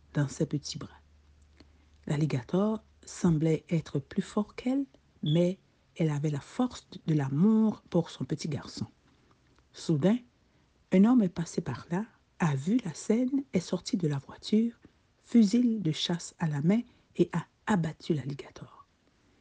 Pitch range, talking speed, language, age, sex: 145-200 Hz, 145 wpm, French, 60-79, female